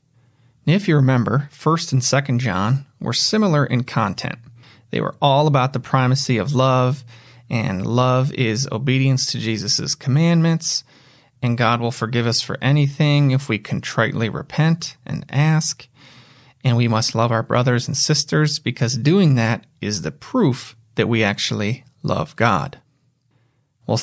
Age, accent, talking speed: 30-49, American, 145 wpm